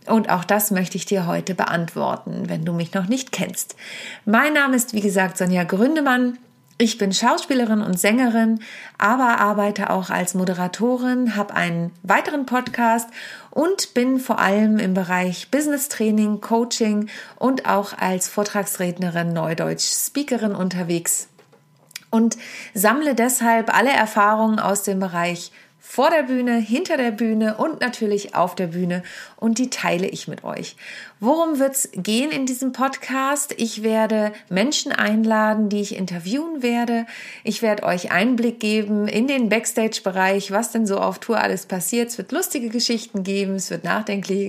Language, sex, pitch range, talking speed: German, female, 195-250 Hz, 150 wpm